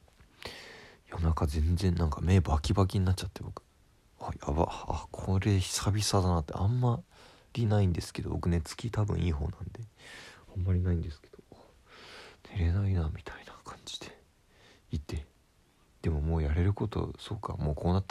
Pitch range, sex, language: 80-105 Hz, male, Japanese